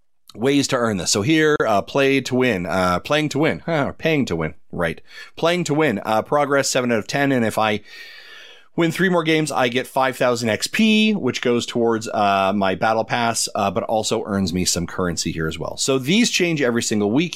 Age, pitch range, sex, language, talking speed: 30-49, 110-155 Hz, male, English, 220 wpm